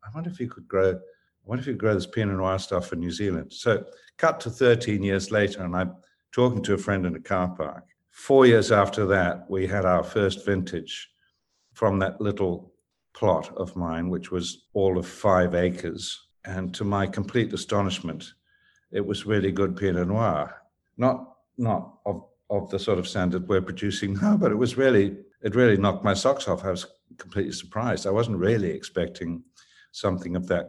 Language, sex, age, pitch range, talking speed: English, male, 60-79, 90-110 Hz, 195 wpm